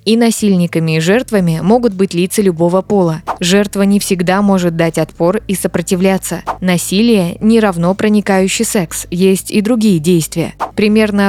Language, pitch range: Russian, 170-205 Hz